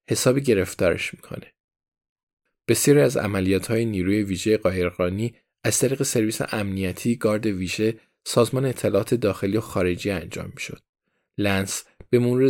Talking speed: 125 wpm